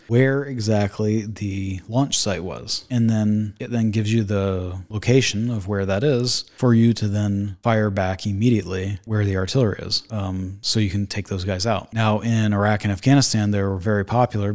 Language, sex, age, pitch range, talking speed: English, male, 30-49, 100-115 Hz, 190 wpm